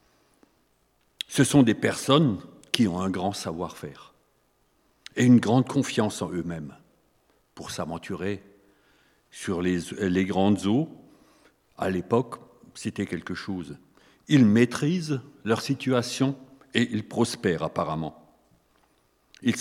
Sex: male